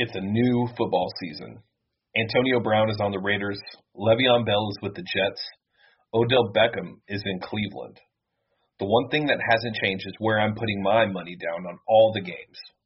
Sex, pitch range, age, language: male, 100-120 Hz, 30-49, English